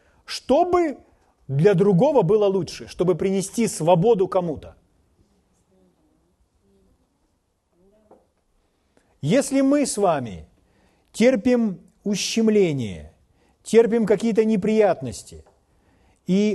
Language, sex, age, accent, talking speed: Russian, male, 40-59, native, 70 wpm